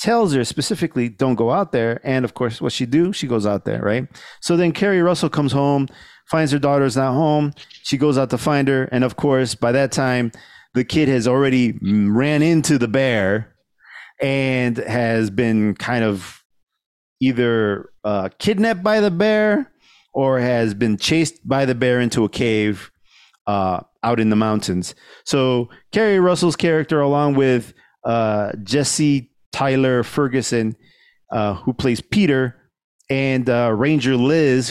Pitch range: 115-145 Hz